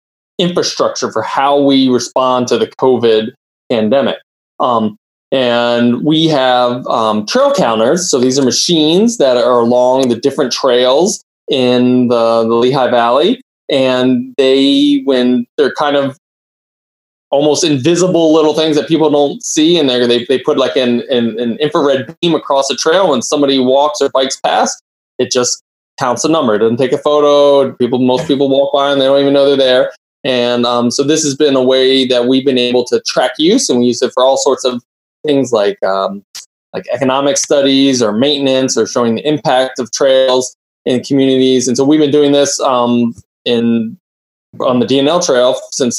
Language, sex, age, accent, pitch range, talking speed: English, male, 20-39, American, 120-140 Hz, 180 wpm